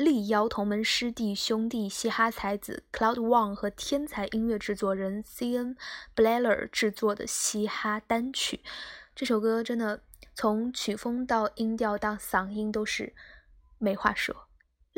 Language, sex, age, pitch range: Chinese, female, 10-29, 210-235 Hz